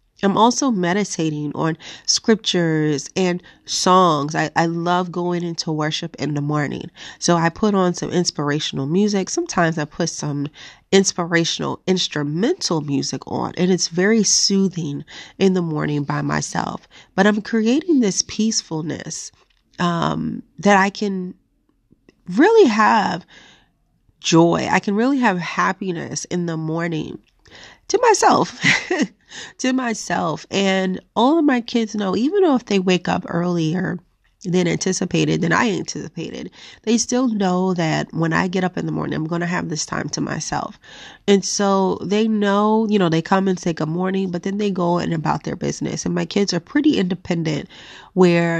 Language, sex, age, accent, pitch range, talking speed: English, female, 30-49, American, 165-205 Hz, 160 wpm